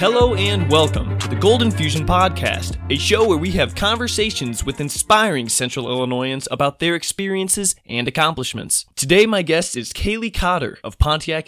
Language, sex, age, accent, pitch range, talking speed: English, male, 20-39, American, 120-180 Hz, 160 wpm